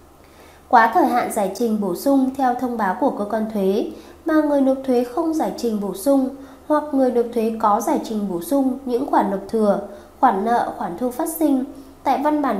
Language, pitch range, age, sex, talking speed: Vietnamese, 205-275 Hz, 20-39, female, 215 wpm